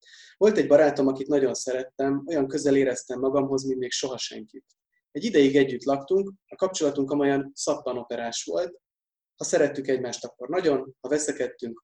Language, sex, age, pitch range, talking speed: Hungarian, male, 30-49, 130-150 Hz, 155 wpm